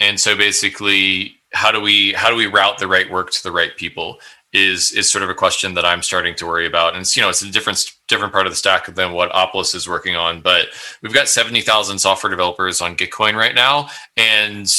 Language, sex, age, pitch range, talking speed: English, male, 20-39, 100-120 Hz, 240 wpm